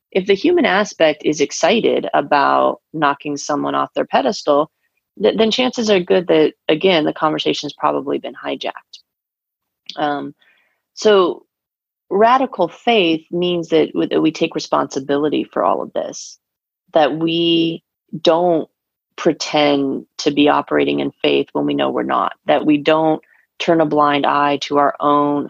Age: 30-49